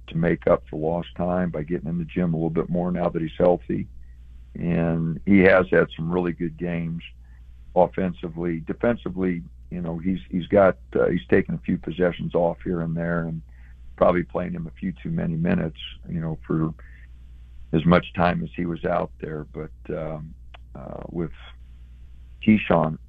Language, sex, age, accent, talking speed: English, male, 50-69, American, 180 wpm